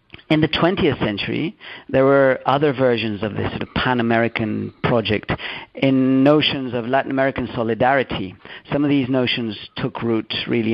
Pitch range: 115-145 Hz